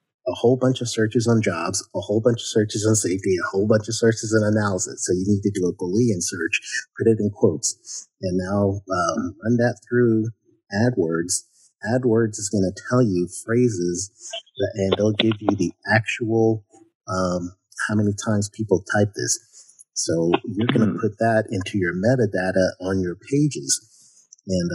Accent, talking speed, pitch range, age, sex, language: American, 180 wpm, 95-115 Hz, 30-49, male, English